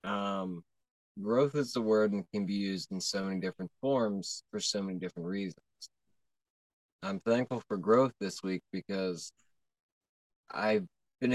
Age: 20-39